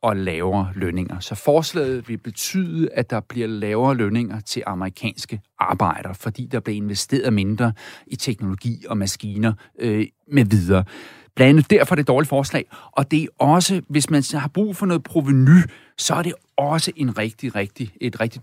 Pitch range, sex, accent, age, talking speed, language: 115-155 Hz, male, native, 40-59, 175 wpm, Danish